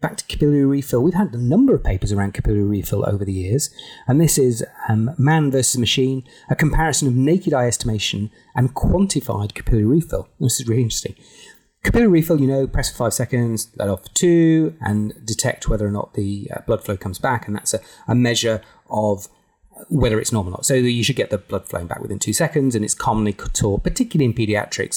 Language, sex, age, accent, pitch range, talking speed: English, male, 30-49, British, 105-135 Hz, 215 wpm